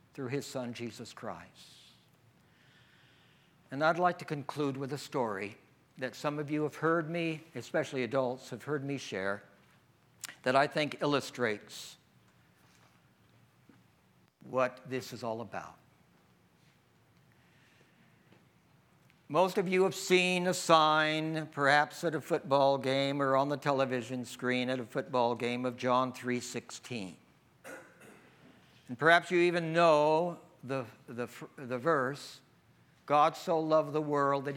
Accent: American